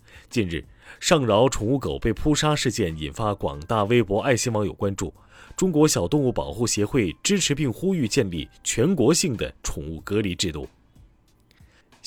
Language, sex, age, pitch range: Chinese, male, 30-49, 100-135 Hz